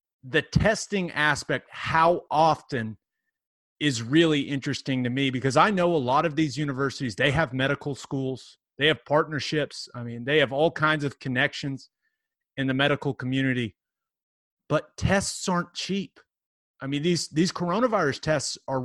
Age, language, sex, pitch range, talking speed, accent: 30-49, English, male, 135-170 Hz, 155 wpm, American